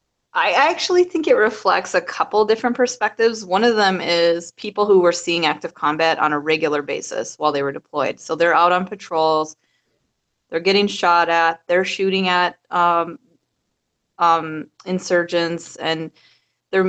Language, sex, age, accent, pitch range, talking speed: English, female, 20-39, American, 160-190 Hz, 155 wpm